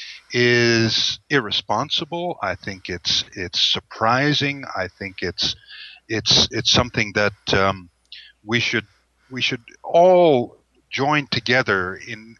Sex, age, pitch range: male, 50-69, 100-130 Hz